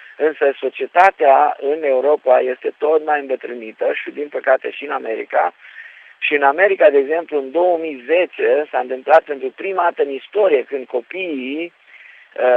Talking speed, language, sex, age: 145 wpm, Romanian, male, 50-69